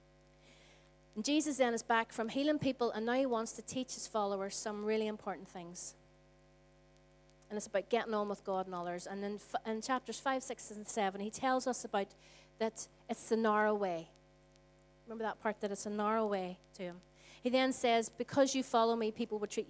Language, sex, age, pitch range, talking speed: English, female, 30-49, 195-260 Hz, 200 wpm